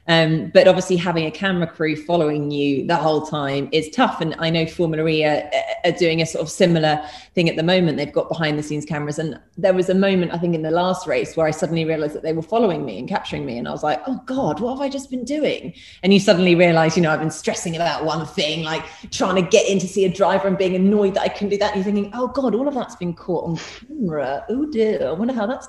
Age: 30-49